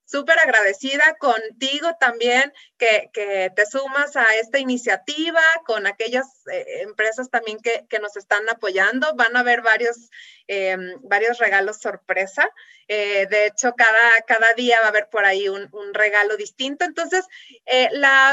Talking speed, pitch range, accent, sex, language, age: 155 wpm, 210-270 Hz, Mexican, female, Spanish, 30-49